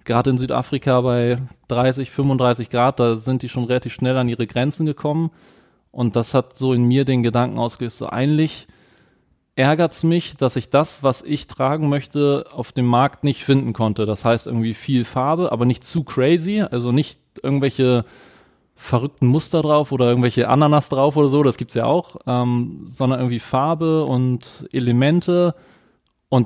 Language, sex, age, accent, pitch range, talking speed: German, male, 20-39, German, 120-135 Hz, 175 wpm